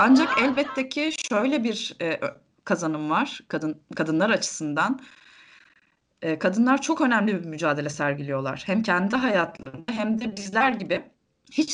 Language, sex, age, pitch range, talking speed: Turkish, female, 20-39, 155-225 Hz, 130 wpm